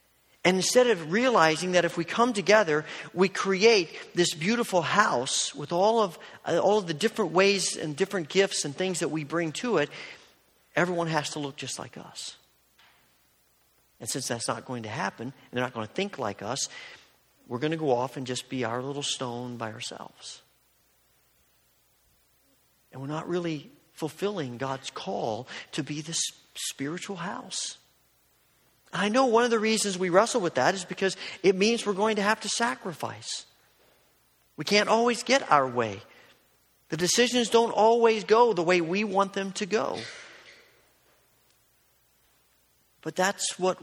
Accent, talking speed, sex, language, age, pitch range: American, 165 wpm, male, English, 50-69, 135-205 Hz